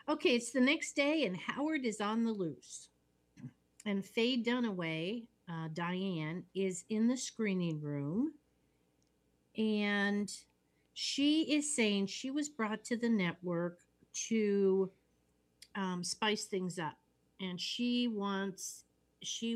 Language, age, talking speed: English, 50-69, 125 wpm